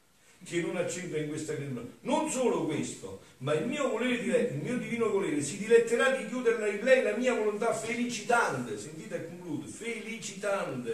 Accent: native